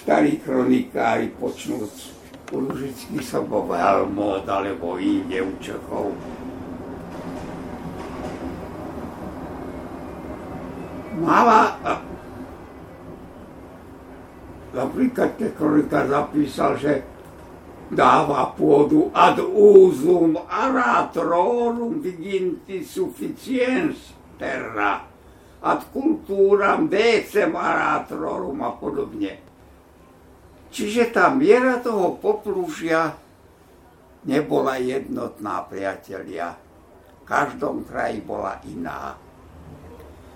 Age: 60-79